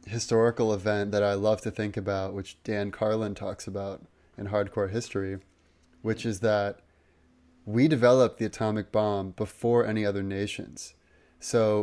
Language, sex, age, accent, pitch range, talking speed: English, male, 20-39, American, 100-115 Hz, 145 wpm